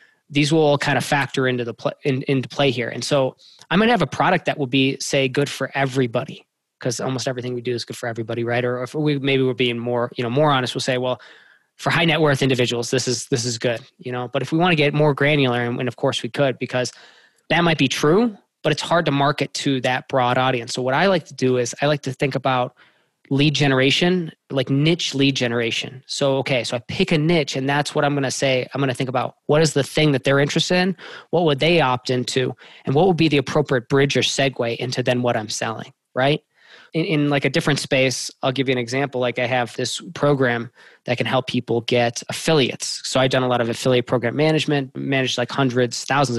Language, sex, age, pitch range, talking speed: English, male, 20-39, 125-145 Hz, 245 wpm